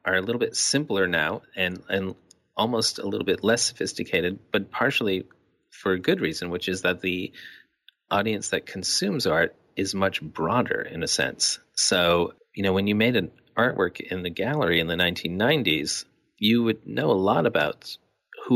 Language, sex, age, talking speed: English, male, 40-59, 180 wpm